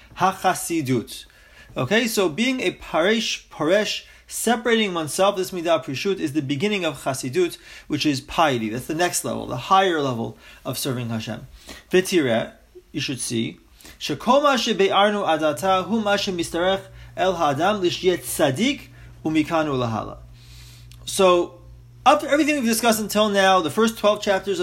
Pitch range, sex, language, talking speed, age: 150-220 Hz, male, English, 105 wpm, 30-49